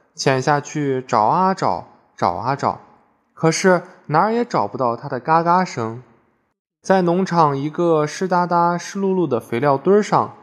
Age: 20-39